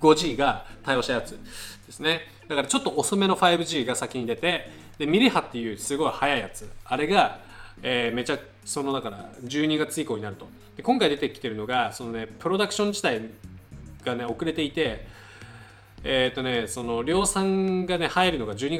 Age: 20-39